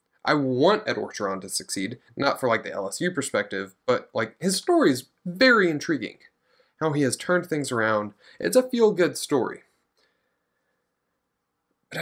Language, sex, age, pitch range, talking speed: English, male, 20-39, 105-140 Hz, 150 wpm